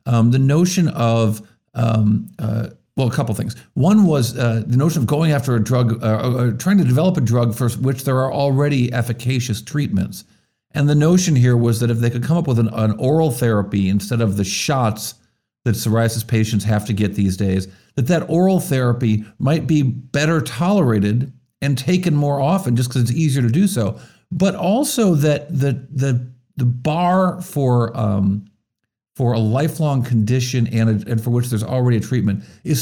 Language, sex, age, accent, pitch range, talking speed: English, male, 50-69, American, 110-145 Hz, 190 wpm